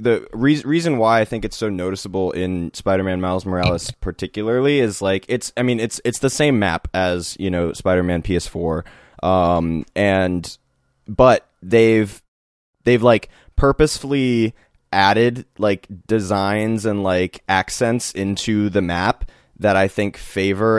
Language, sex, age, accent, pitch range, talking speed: English, male, 20-39, American, 90-110 Hz, 140 wpm